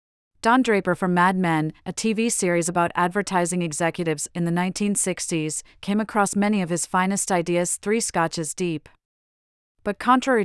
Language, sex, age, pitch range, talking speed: English, female, 40-59, 165-205 Hz, 150 wpm